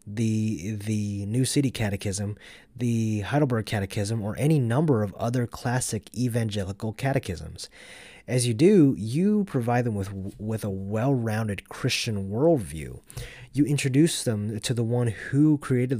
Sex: male